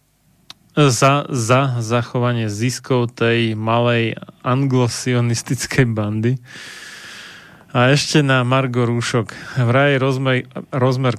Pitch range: 115-130 Hz